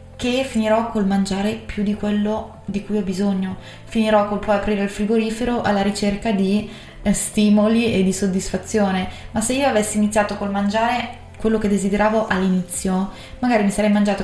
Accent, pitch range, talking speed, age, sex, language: native, 195-215 Hz, 165 wpm, 20-39, female, Italian